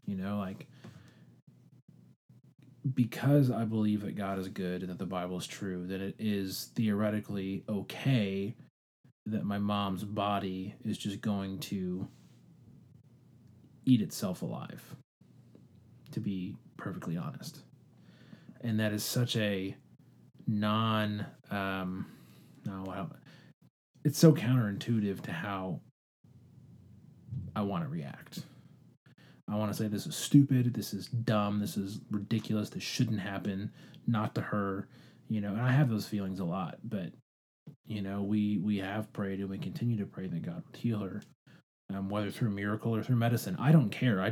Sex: male